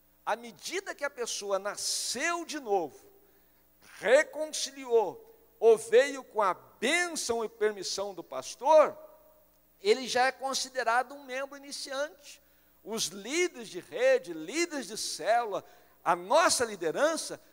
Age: 60-79